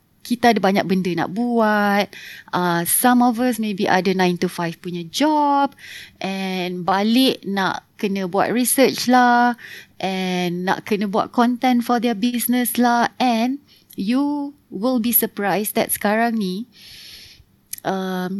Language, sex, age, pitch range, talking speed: Malay, female, 20-39, 195-255 Hz, 135 wpm